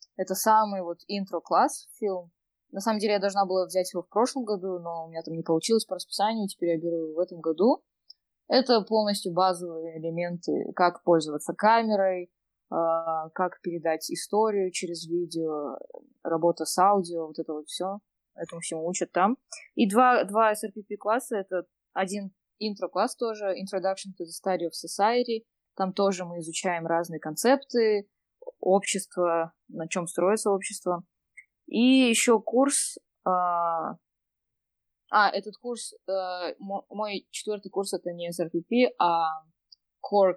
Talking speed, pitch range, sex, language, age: 145 wpm, 170-210 Hz, female, English, 20-39